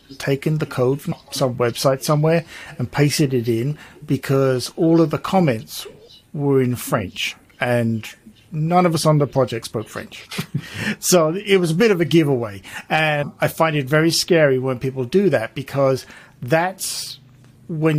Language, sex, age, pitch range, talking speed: English, male, 50-69, 125-160 Hz, 165 wpm